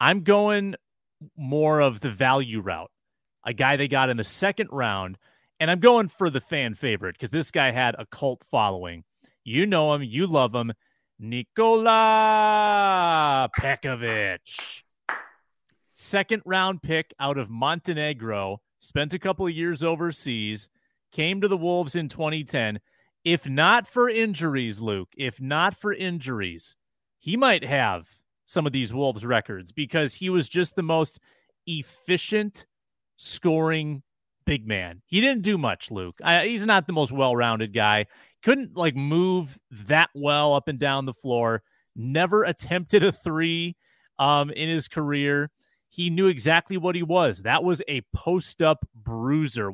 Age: 30-49